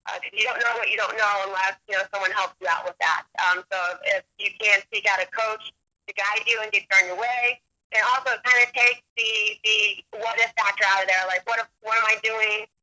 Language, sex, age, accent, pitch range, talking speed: English, female, 30-49, American, 195-220 Hz, 255 wpm